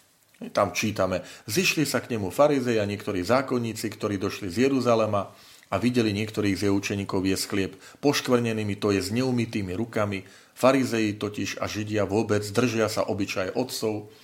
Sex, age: male, 40-59